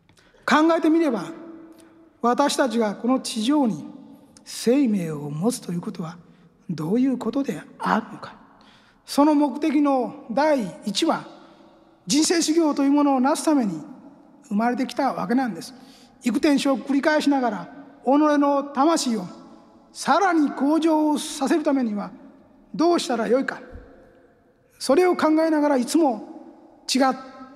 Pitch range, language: 240-295 Hz, Japanese